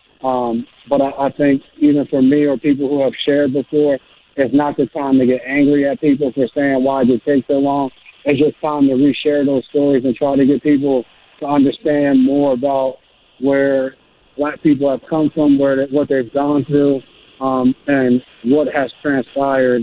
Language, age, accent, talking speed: English, 40-59, American, 195 wpm